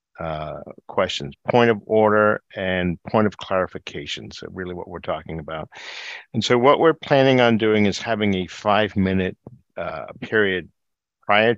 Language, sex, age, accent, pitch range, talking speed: English, male, 50-69, American, 90-110 Hz, 140 wpm